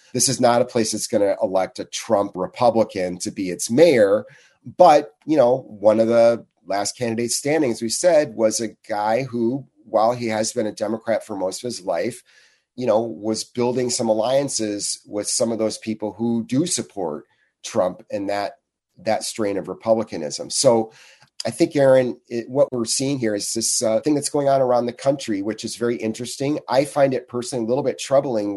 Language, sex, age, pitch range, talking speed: English, male, 30-49, 105-130 Hz, 200 wpm